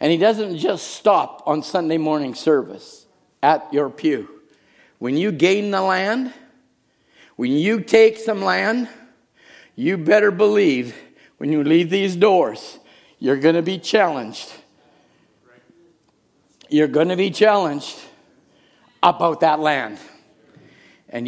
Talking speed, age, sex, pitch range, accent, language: 125 wpm, 50-69, male, 155-195 Hz, American, English